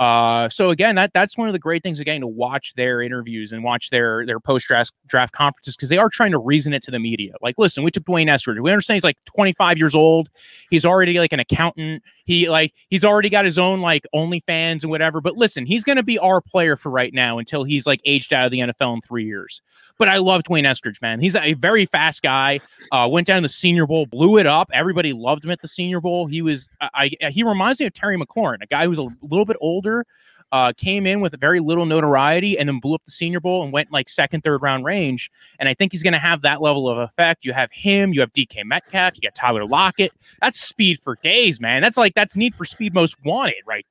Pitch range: 140-185 Hz